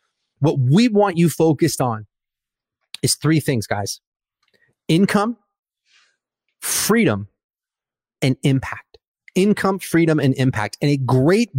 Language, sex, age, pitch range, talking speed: English, male, 30-49, 130-165 Hz, 110 wpm